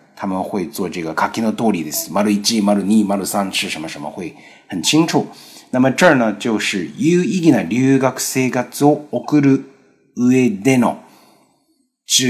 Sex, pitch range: male, 105-150 Hz